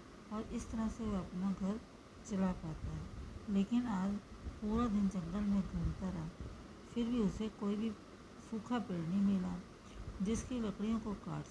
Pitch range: 175-215 Hz